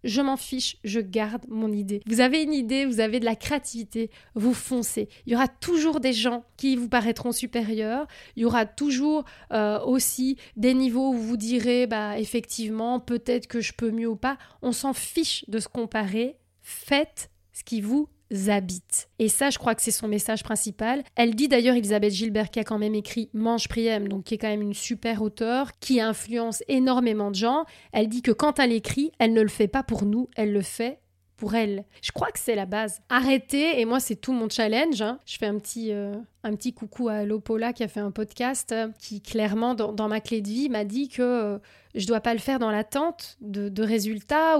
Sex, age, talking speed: female, 30-49, 215 wpm